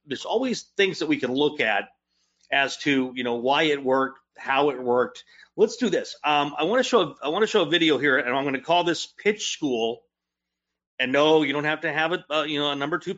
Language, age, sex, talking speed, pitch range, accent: English, 40-59, male, 250 wpm, 125-165 Hz, American